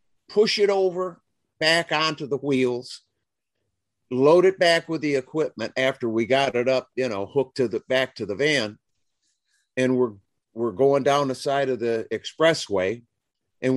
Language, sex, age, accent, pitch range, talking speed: English, male, 50-69, American, 125-180 Hz, 165 wpm